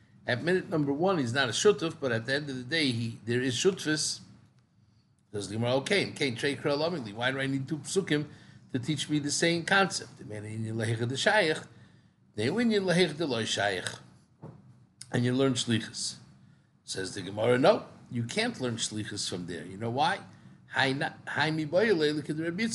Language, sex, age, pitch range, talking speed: English, male, 50-69, 120-165 Hz, 155 wpm